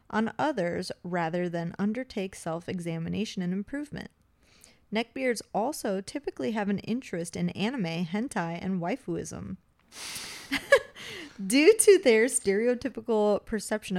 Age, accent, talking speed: 20-39, American, 105 wpm